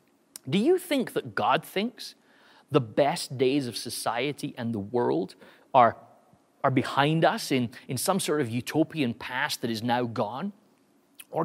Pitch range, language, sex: 135-210 Hz, English, male